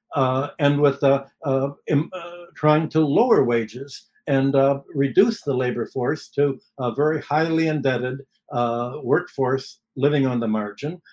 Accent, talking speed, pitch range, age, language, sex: American, 140 wpm, 135-160 Hz, 60-79, English, male